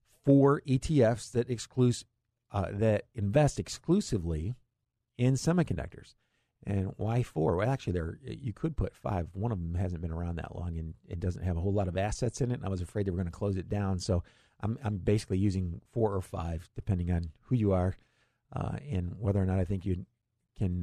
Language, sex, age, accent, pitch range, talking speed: English, male, 50-69, American, 90-120 Hz, 210 wpm